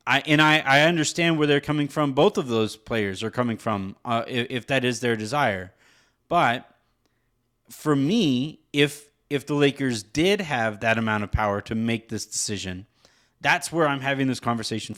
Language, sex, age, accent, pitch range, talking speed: English, male, 30-49, American, 120-155 Hz, 185 wpm